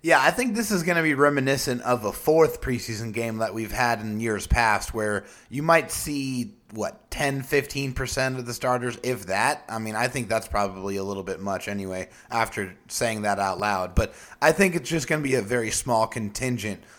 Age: 30-49